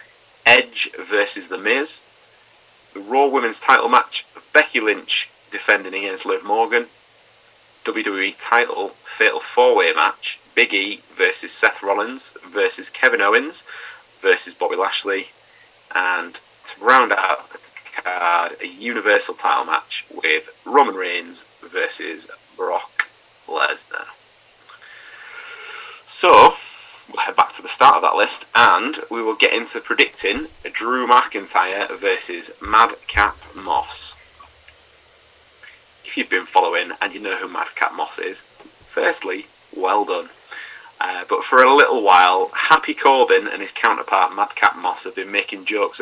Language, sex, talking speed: English, male, 130 wpm